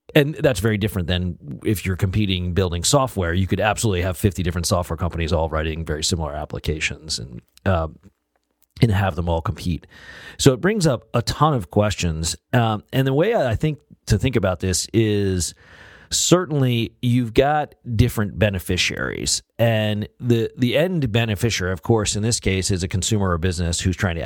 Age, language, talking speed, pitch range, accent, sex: 40-59, English, 180 wpm, 85-110 Hz, American, male